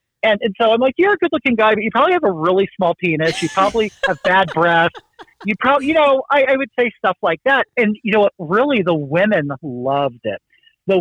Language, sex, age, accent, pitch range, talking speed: English, male, 40-59, American, 155-230 Hz, 240 wpm